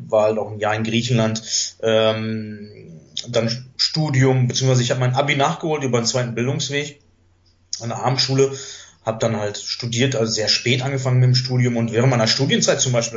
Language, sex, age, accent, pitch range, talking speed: German, male, 30-49, German, 105-130 Hz, 180 wpm